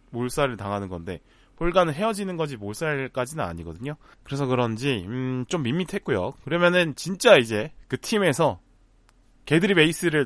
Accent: native